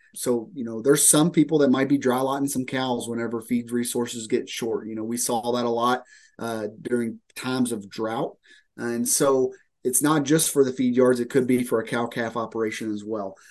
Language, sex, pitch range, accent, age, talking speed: English, male, 120-155 Hz, American, 30-49, 215 wpm